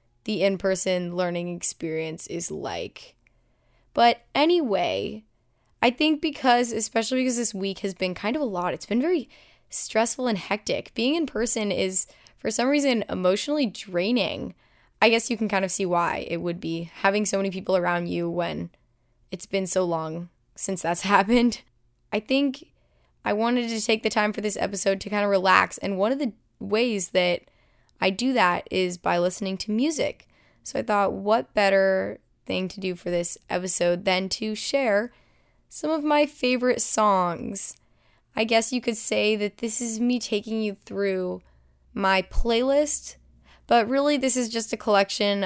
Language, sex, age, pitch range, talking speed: English, female, 10-29, 185-235 Hz, 170 wpm